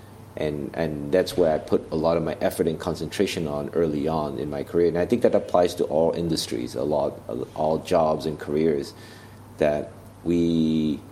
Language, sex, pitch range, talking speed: English, male, 80-105 Hz, 190 wpm